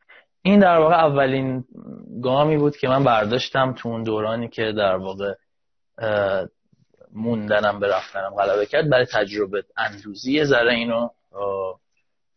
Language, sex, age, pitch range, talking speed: Persian, male, 30-49, 105-130 Hz, 130 wpm